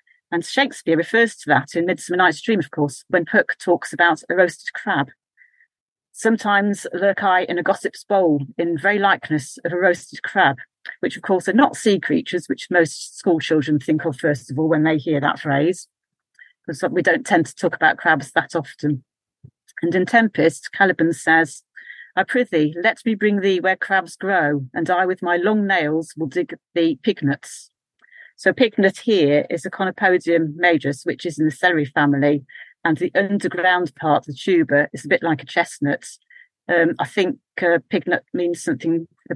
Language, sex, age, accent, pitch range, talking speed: English, female, 40-59, British, 155-190 Hz, 185 wpm